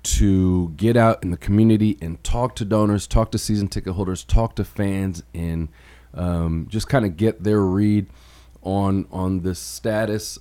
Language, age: English, 30-49